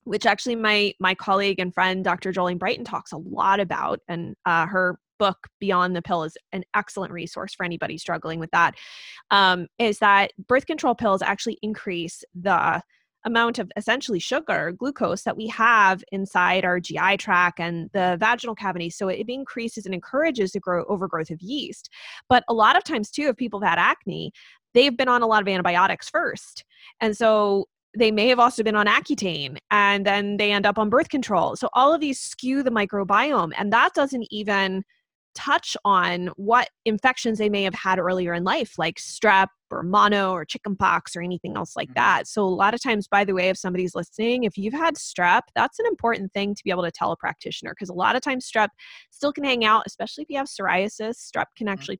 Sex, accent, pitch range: female, American, 185-235 Hz